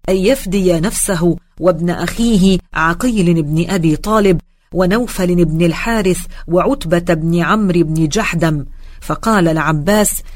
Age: 40-59